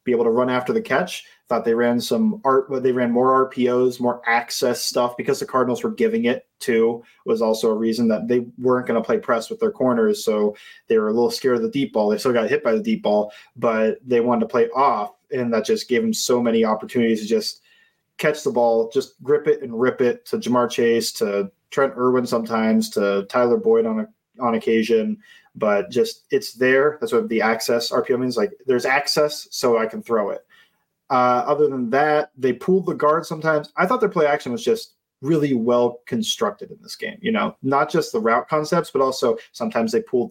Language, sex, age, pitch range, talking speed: English, male, 20-39, 115-165 Hz, 225 wpm